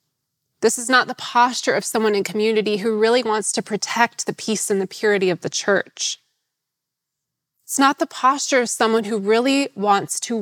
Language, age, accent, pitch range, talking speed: English, 20-39, American, 195-255 Hz, 185 wpm